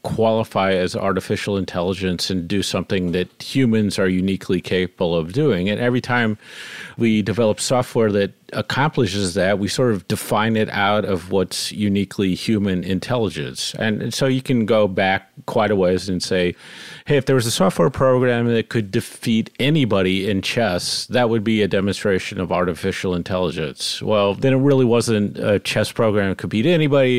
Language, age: English, 40-59